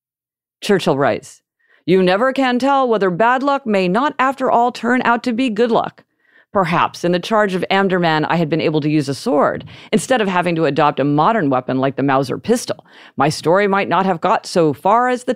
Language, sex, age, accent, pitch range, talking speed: English, female, 50-69, American, 155-225 Hz, 215 wpm